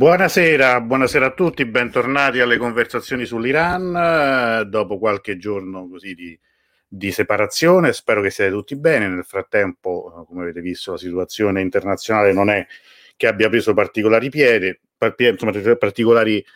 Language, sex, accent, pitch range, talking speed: Italian, male, native, 95-130 Hz, 130 wpm